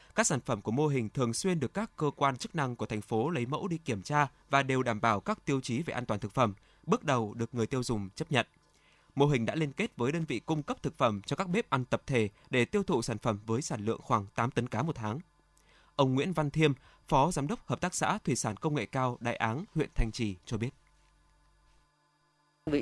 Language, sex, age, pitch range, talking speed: Vietnamese, male, 20-39, 120-145 Hz, 255 wpm